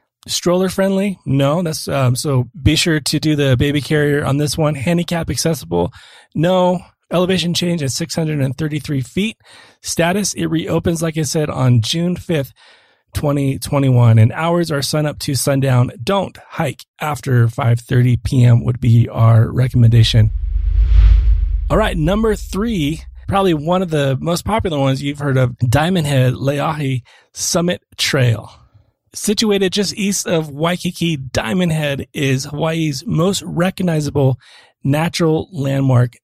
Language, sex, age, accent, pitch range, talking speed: English, male, 30-49, American, 130-170 Hz, 135 wpm